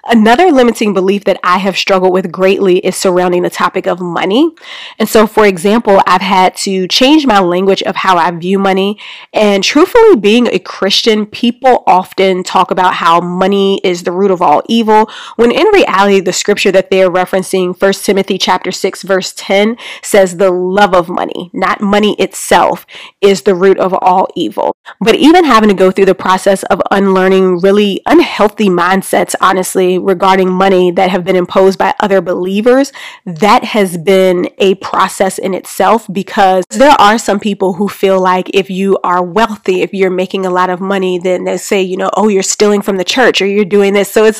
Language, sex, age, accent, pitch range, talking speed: English, female, 20-39, American, 185-210 Hz, 190 wpm